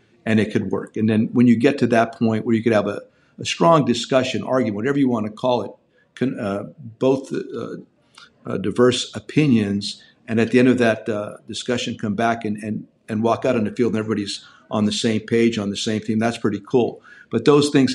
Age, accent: 50-69, American